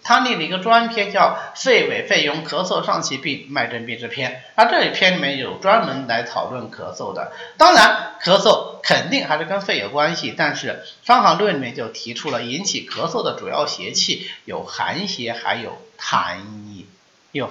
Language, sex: Chinese, male